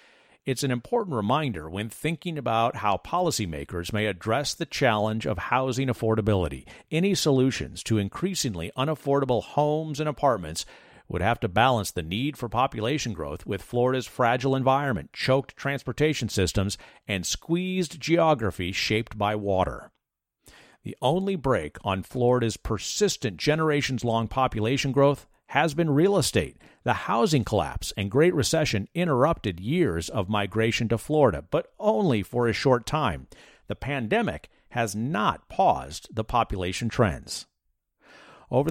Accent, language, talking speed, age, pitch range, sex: American, English, 135 wpm, 50-69, 100-140 Hz, male